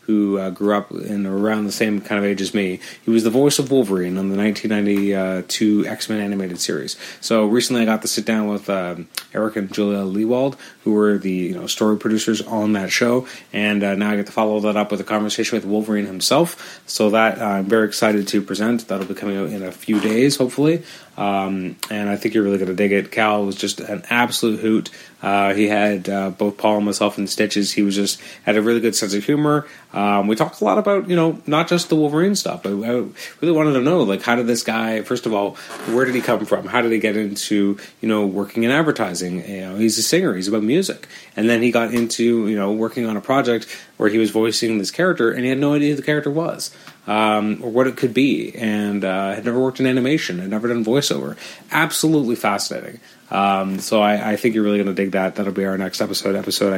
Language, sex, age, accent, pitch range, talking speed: English, male, 30-49, American, 100-120 Hz, 240 wpm